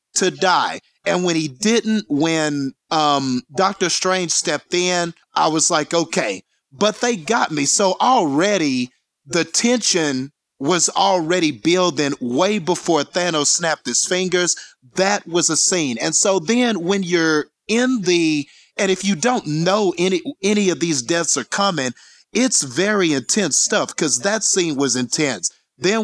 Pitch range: 155-200 Hz